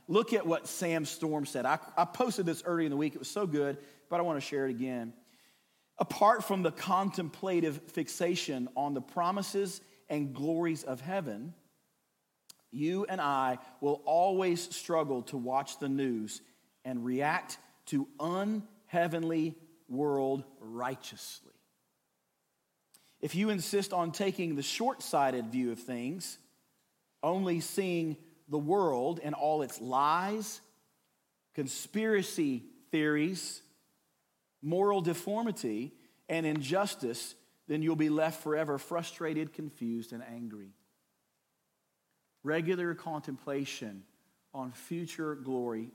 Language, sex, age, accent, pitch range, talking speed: English, male, 40-59, American, 130-175 Hz, 120 wpm